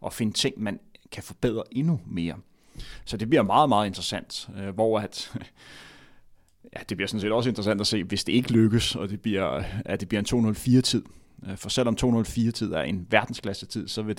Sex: male